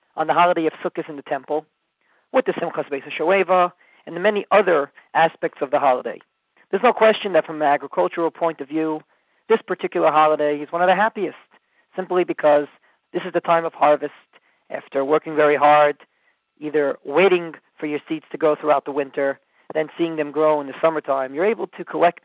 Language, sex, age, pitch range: English, male, 40-59, 150-185 Hz